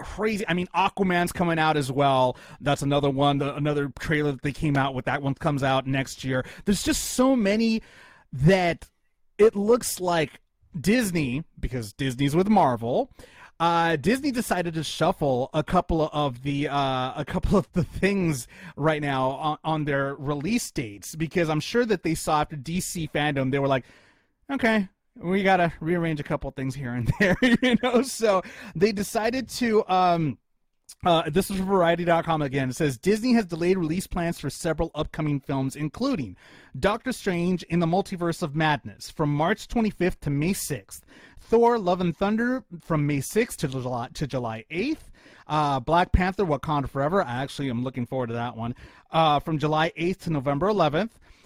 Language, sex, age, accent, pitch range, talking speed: English, male, 30-49, American, 140-190 Hz, 180 wpm